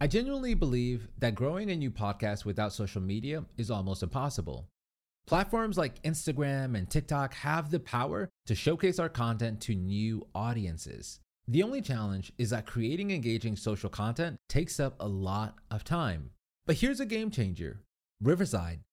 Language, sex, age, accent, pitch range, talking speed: English, male, 30-49, American, 105-155 Hz, 160 wpm